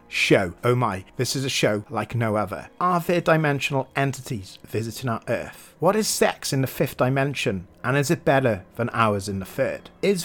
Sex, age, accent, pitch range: male, 40-59, British, 120-165 Hz